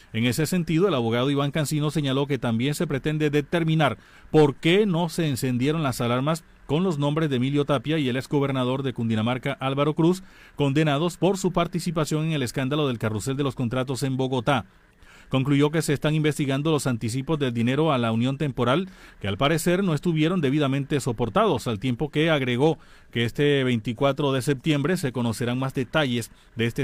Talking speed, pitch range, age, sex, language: 185 wpm, 125-160 Hz, 40-59, male, Spanish